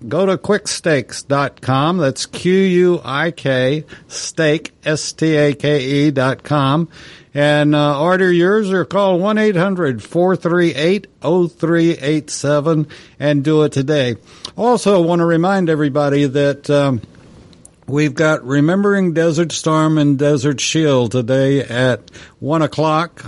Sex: male